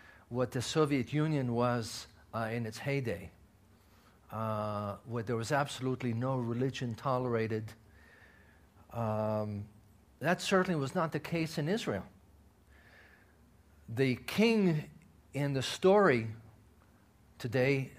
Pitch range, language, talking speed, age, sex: 105-155 Hz, English, 105 wpm, 50-69, male